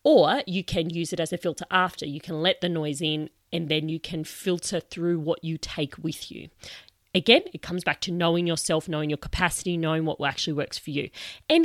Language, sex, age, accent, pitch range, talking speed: English, female, 30-49, Australian, 150-180 Hz, 220 wpm